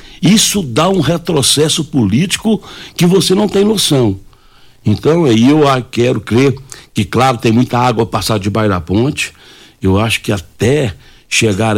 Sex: male